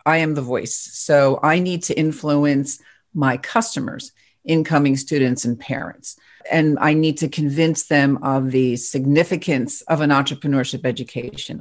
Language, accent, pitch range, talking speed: English, American, 130-155 Hz, 145 wpm